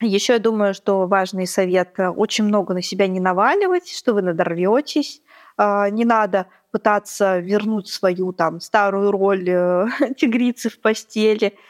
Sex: female